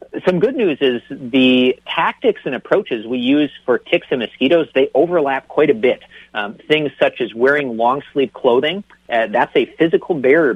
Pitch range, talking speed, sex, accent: 125-160 Hz, 180 wpm, male, American